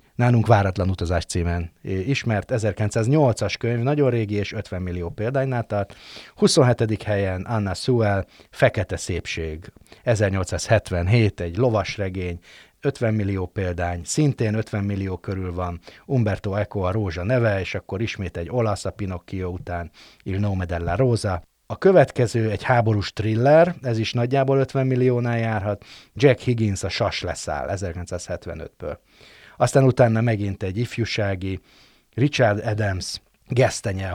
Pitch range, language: 95-120 Hz, Hungarian